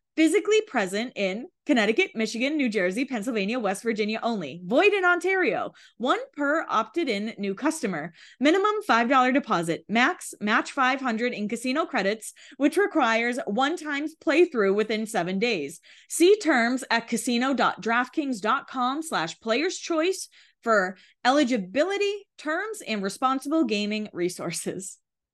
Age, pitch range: 20-39, 210-305 Hz